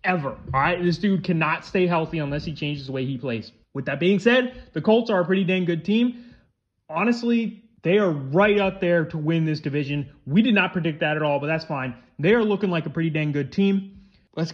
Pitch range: 145-190 Hz